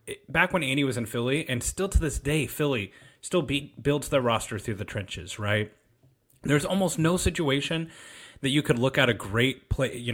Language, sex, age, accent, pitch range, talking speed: English, male, 30-49, American, 110-135 Hz, 200 wpm